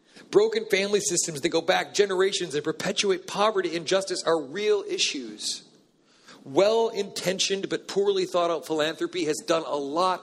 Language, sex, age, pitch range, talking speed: English, male, 40-59, 145-210 Hz, 140 wpm